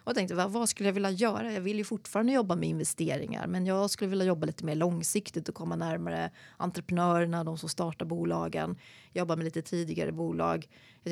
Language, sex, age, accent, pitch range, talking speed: Swedish, female, 30-49, native, 175-210 Hz, 195 wpm